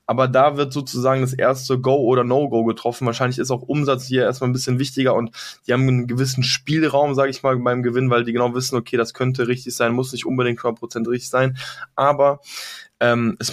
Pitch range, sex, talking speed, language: 120-135 Hz, male, 215 wpm, German